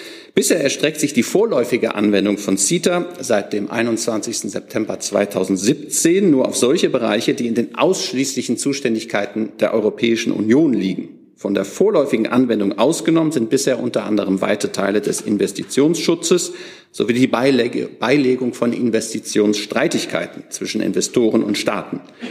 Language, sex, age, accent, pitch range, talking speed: German, male, 50-69, German, 105-140 Hz, 130 wpm